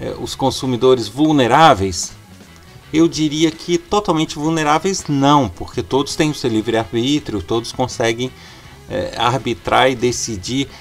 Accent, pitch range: Brazilian, 110-150 Hz